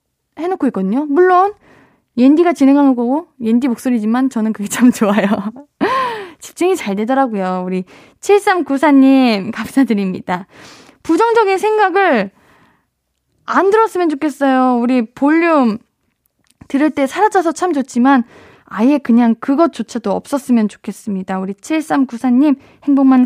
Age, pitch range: 20-39, 215-325 Hz